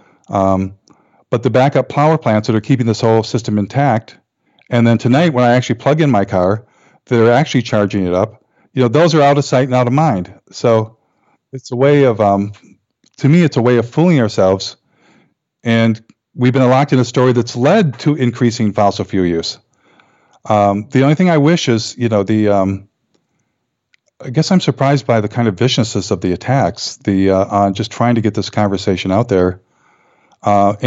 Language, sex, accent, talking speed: English, male, American, 200 wpm